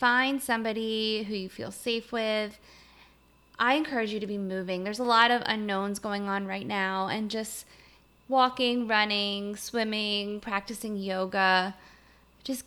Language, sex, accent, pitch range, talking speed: English, female, American, 195-225 Hz, 140 wpm